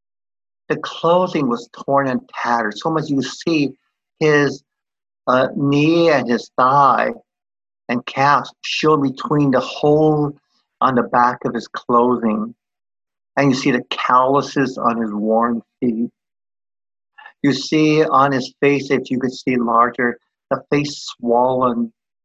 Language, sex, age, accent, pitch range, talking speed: English, male, 50-69, American, 120-140 Hz, 135 wpm